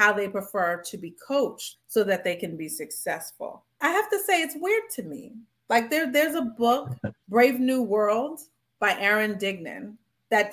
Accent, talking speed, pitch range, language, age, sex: American, 180 wpm, 185-240 Hz, English, 30-49, female